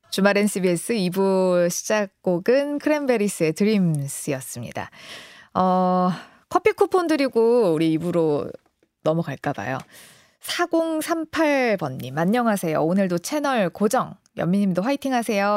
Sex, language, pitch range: female, Korean, 165-250 Hz